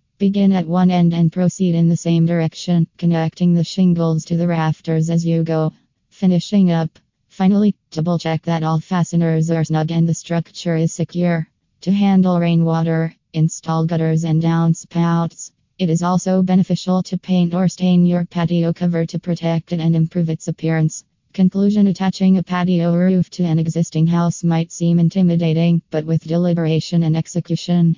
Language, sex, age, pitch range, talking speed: English, female, 20-39, 160-175 Hz, 160 wpm